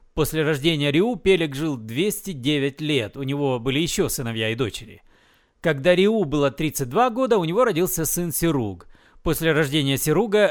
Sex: male